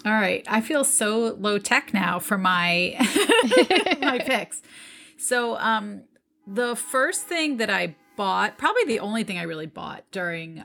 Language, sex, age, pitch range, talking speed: English, female, 30-49, 190-245 Hz, 160 wpm